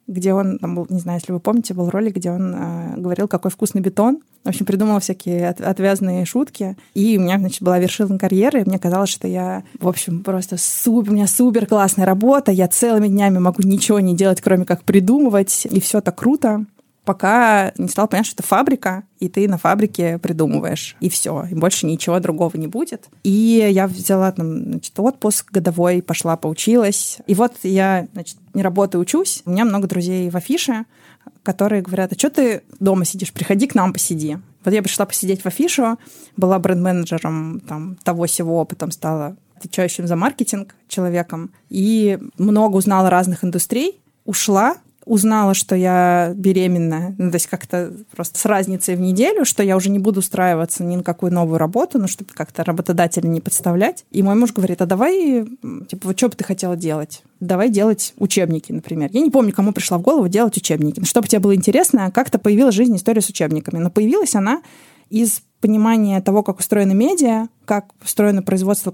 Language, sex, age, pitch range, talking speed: Russian, female, 20-39, 180-215 Hz, 185 wpm